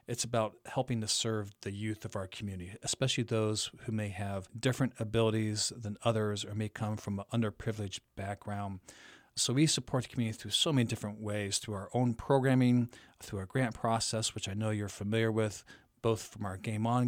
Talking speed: 195 wpm